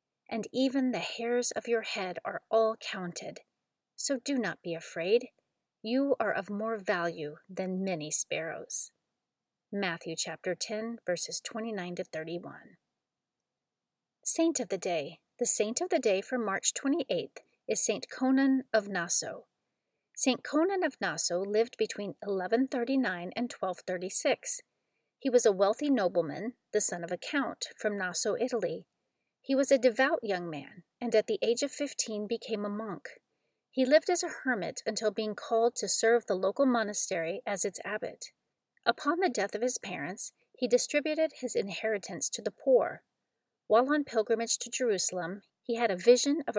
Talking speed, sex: 165 wpm, female